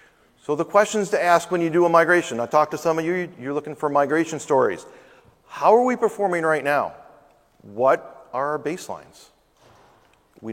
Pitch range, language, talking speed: 145-185 Hz, English, 180 wpm